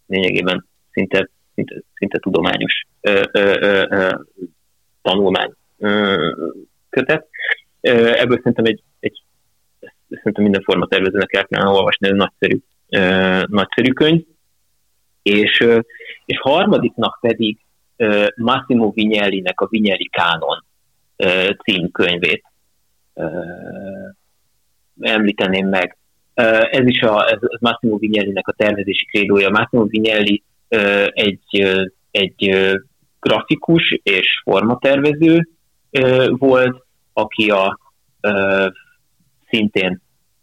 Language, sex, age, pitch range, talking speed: Hungarian, male, 30-49, 95-115 Hz, 95 wpm